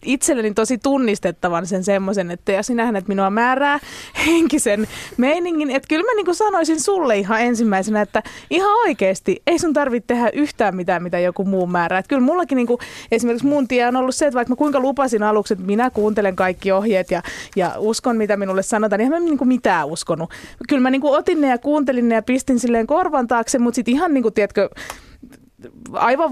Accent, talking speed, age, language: native, 200 wpm, 20-39, Finnish